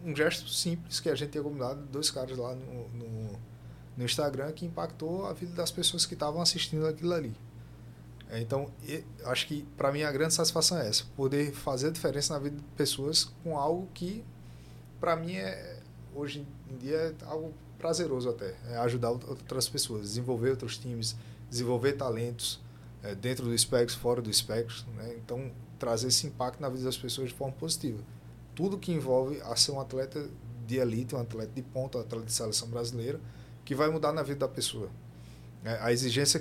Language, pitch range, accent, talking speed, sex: Portuguese, 115-150 Hz, Brazilian, 185 wpm, male